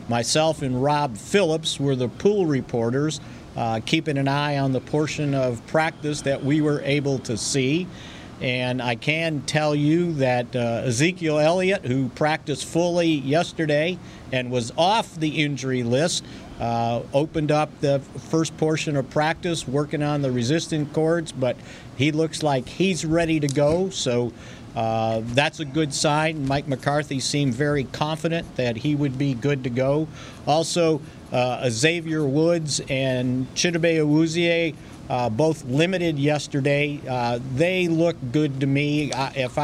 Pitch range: 130-155 Hz